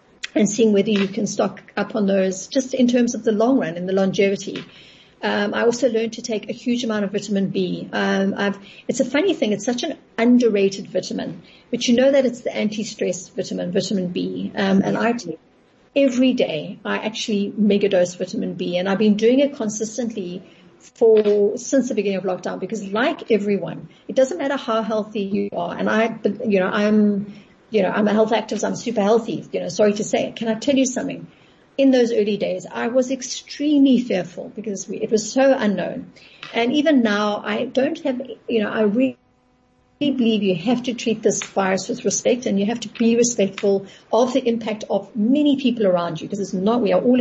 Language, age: English, 50-69